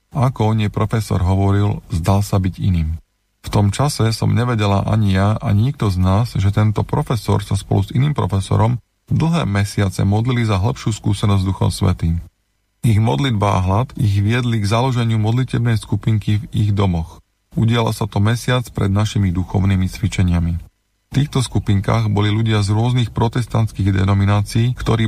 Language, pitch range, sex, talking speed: Slovak, 100-115 Hz, male, 160 wpm